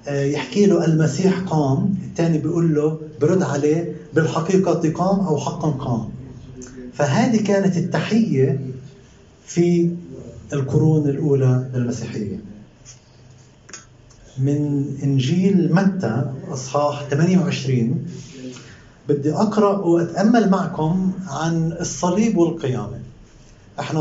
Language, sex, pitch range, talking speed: Arabic, male, 130-175 Hz, 85 wpm